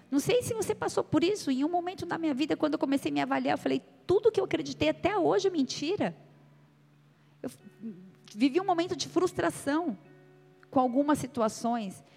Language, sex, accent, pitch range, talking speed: Portuguese, female, Brazilian, 185-300 Hz, 185 wpm